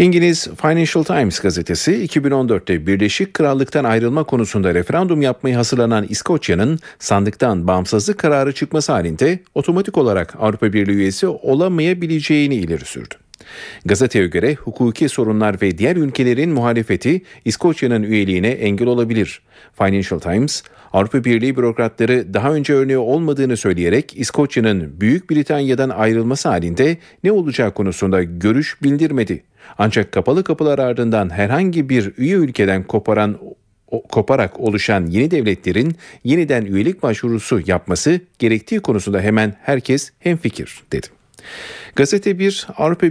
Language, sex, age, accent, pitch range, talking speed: Turkish, male, 40-59, native, 105-150 Hz, 115 wpm